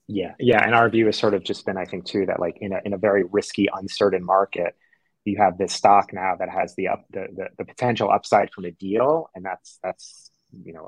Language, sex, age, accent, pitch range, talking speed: English, male, 30-49, American, 95-115 Hz, 250 wpm